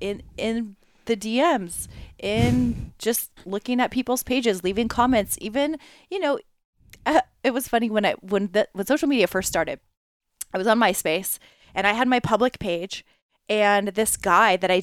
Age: 20-39